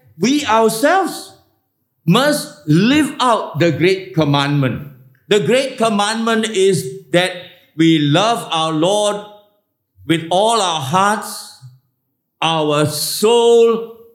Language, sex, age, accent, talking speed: English, male, 50-69, Malaysian, 100 wpm